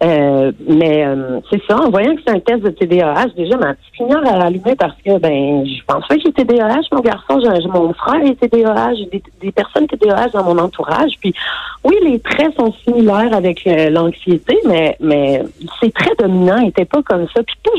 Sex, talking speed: female, 215 wpm